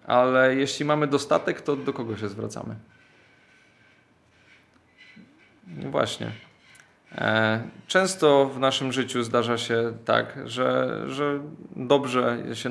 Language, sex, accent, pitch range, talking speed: Polish, male, native, 115-145 Hz, 100 wpm